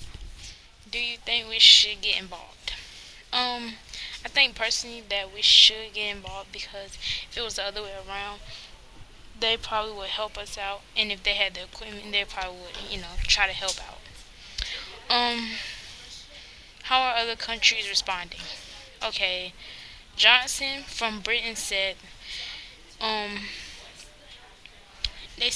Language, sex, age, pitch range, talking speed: English, female, 10-29, 200-230 Hz, 135 wpm